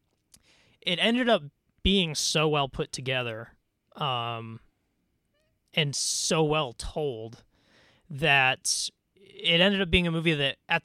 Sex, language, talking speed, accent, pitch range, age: male, English, 120 wpm, American, 110-150 Hz, 20-39